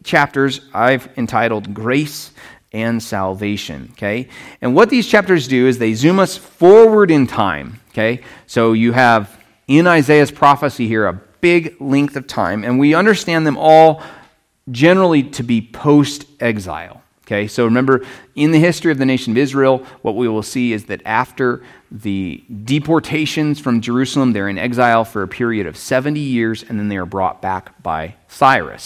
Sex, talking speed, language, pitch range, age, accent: male, 165 wpm, English, 110-145 Hz, 30-49, American